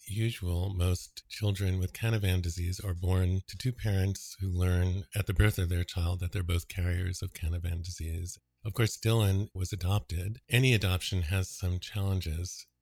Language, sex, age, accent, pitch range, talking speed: English, male, 50-69, American, 90-110 Hz, 170 wpm